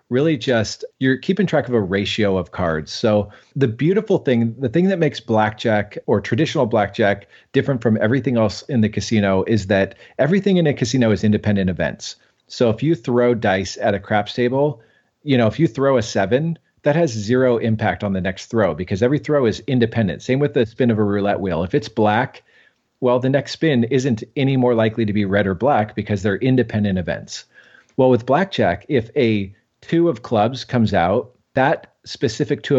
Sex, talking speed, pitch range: male, 200 wpm, 105-130 Hz